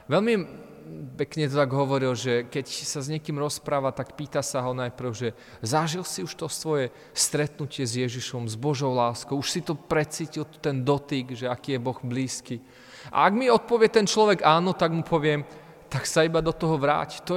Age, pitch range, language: 30-49, 120-155 Hz, Slovak